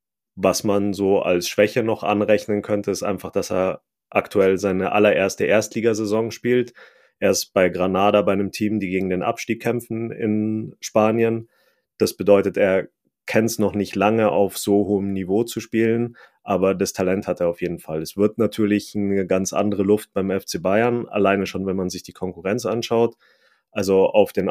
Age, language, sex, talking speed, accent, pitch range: 30-49, German, male, 180 wpm, German, 95-110 Hz